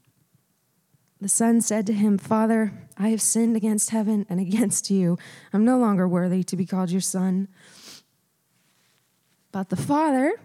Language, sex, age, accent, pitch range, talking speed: English, female, 20-39, American, 190-245 Hz, 150 wpm